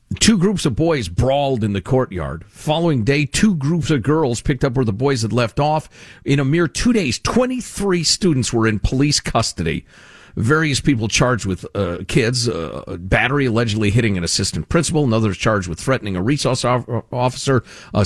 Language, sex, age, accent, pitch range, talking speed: English, male, 50-69, American, 100-145 Hz, 185 wpm